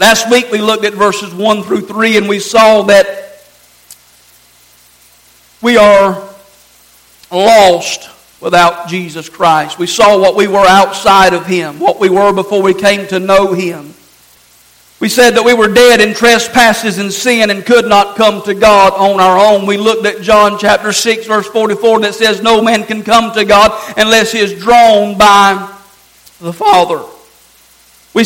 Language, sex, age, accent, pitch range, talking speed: English, male, 50-69, American, 200-230 Hz, 170 wpm